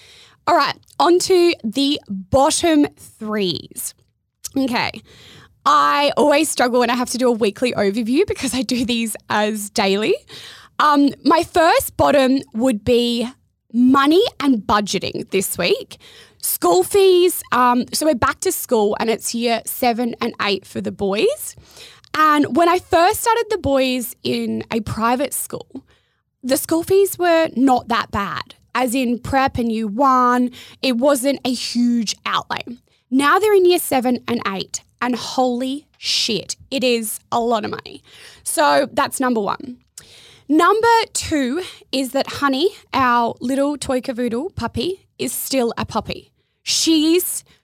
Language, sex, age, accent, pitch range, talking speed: English, female, 20-39, Australian, 235-305 Hz, 145 wpm